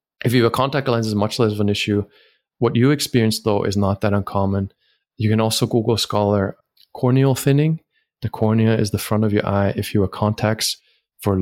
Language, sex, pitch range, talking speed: English, male, 105-135 Hz, 210 wpm